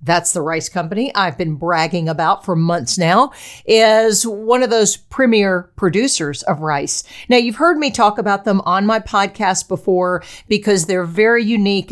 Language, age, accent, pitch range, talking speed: English, 50-69, American, 185-235 Hz, 170 wpm